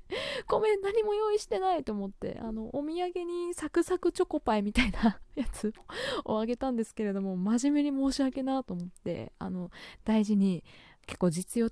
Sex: female